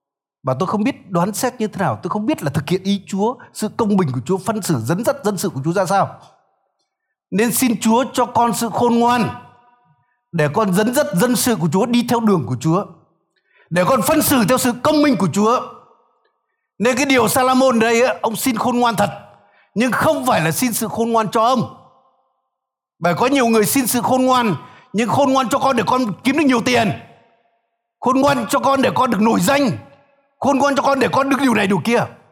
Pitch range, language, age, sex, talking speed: 180-255 Hz, Vietnamese, 60-79, male, 225 wpm